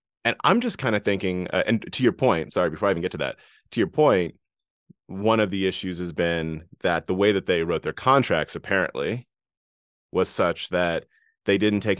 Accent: American